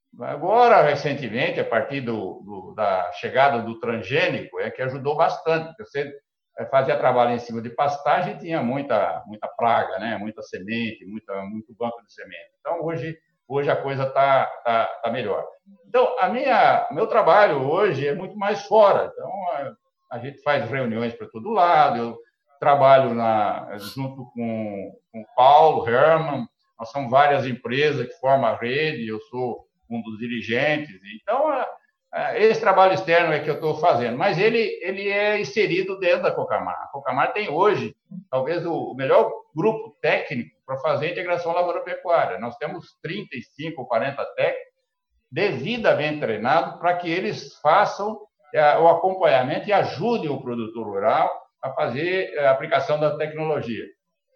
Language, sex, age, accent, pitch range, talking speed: Portuguese, male, 60-79, Brazilian, 125-200 Hz, 150 wpm